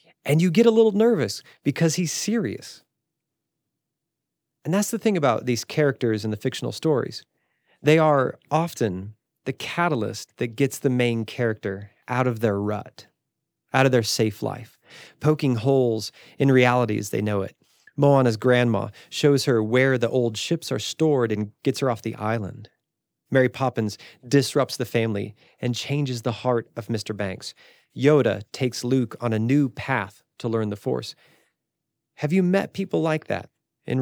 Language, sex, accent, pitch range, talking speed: English, male, American, 110-145 Hz, 165 wpm